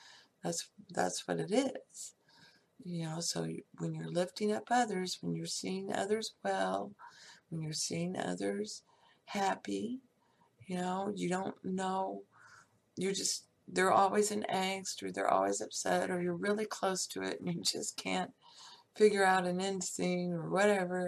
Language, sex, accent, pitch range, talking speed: English, female, American, 175-230 Hz, 155 wpm